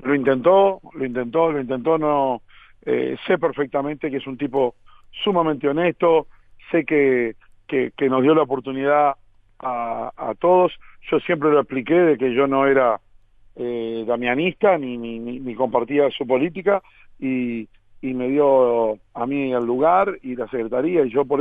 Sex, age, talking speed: male, 50-69, 165 wpm